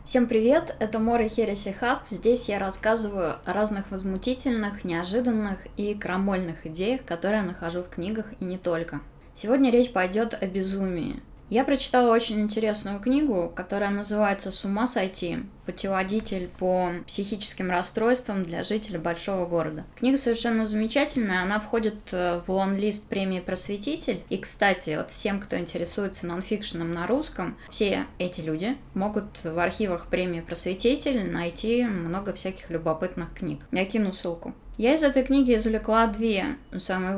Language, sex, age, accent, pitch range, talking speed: Russian, female, 20-39, native, 180-225 Hz, 140 wpm